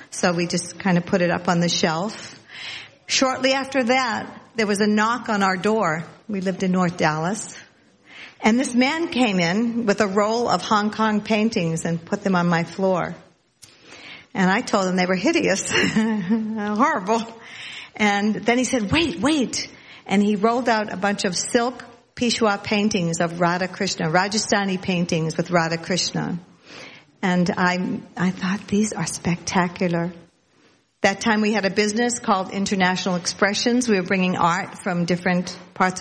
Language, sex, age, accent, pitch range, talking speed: English, female, 50-69, American, 180-230 Hz, 165 wpm